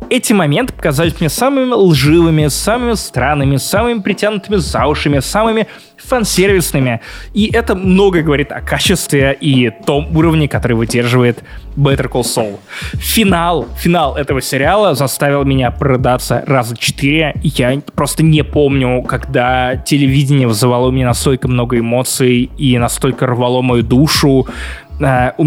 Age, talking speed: 20-39, 125 wpm